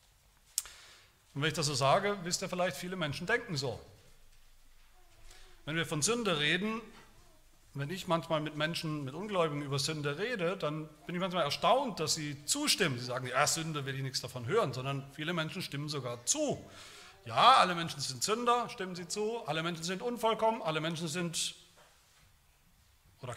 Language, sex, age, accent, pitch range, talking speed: German, male, 40-59, German, 130-190 Hz, 170 wpm